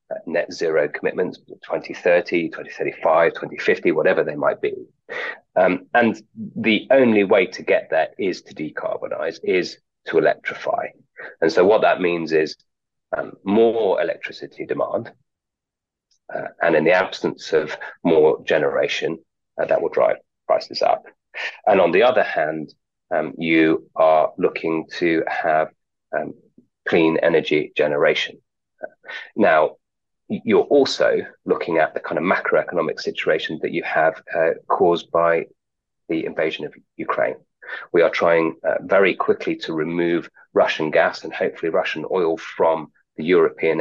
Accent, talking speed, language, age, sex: British, 140 wpm, English, 30-49, male